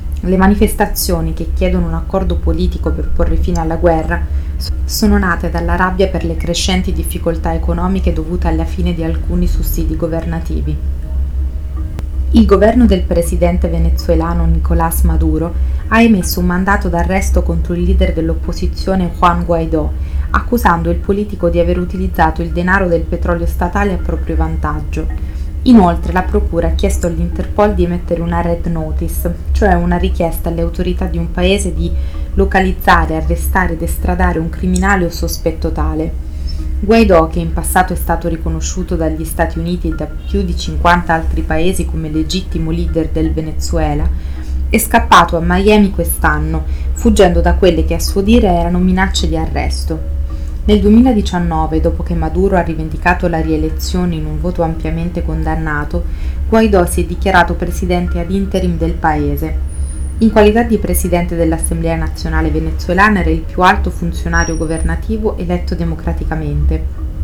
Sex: female